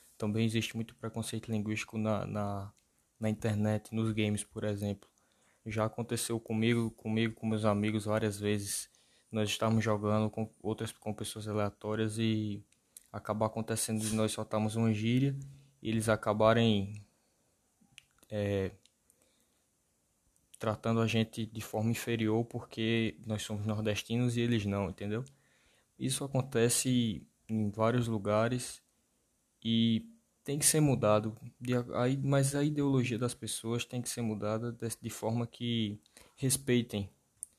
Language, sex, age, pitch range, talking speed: Portuguese, male, 20-39, 105-120 Hz, 120 wpm